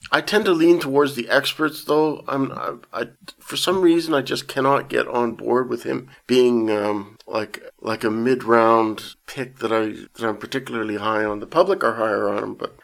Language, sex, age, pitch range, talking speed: English, male, 50-69, 105-125 Hz, 200 wpm